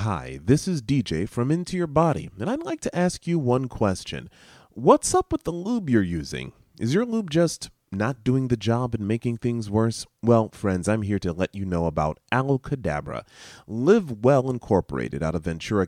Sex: male